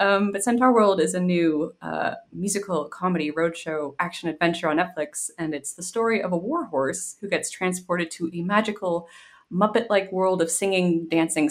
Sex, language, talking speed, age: female, English, 175 wpm, 20-39